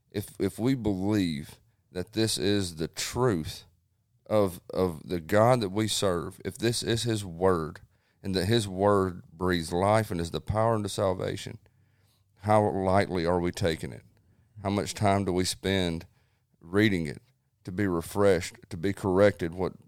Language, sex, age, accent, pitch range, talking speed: English, male, 40-59, American, 90-110 Hz, 165 wpm